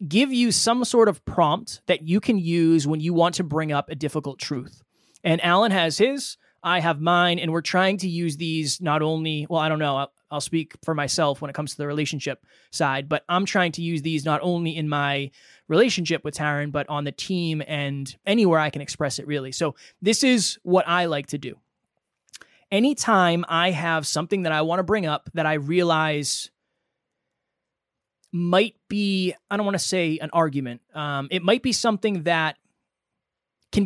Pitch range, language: 150-190 Hz, English